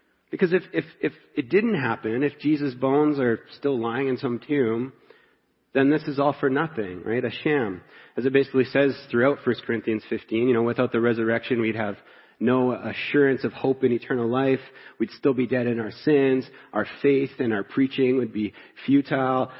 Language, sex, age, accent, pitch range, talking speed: English, male, 40-59, American, 120-140 Hz, 190 wpm